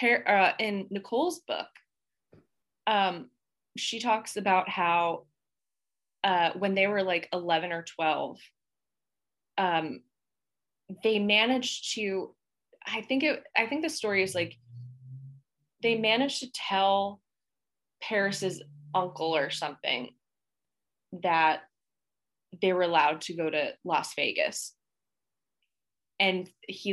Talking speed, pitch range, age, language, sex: 110 wpm, 170-205 Hz, 20-39, English, female